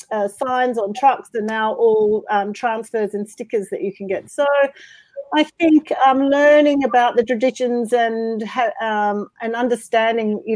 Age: 40-59